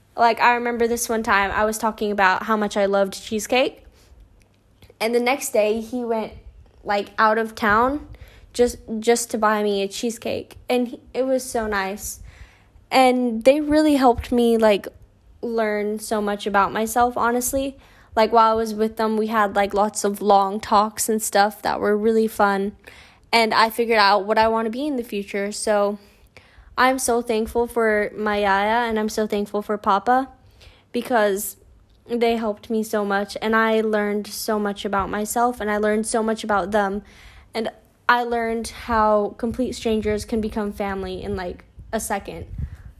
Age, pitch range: 10-29, 205-235 Hz